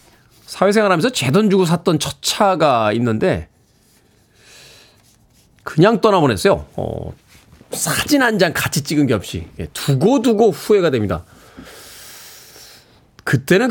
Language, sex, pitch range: Korean, male, 115-155 Hz